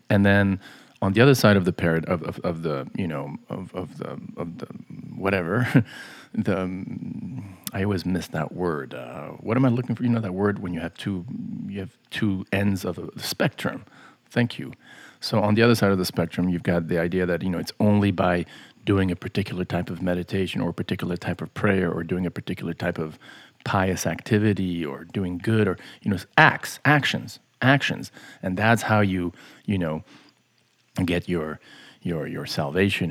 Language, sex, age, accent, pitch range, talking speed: English, male, 40-59, Canadian, 90-105 Hz, 195 wpm